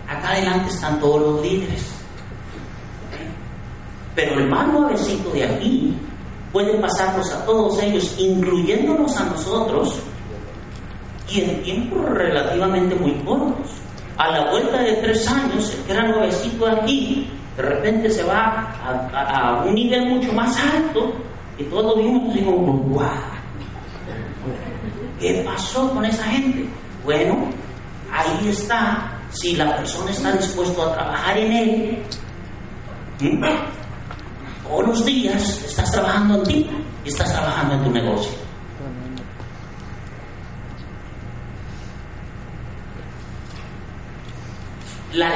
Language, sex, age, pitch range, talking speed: Spanish, male, 40-59, 135-230 Hz, 115 wpm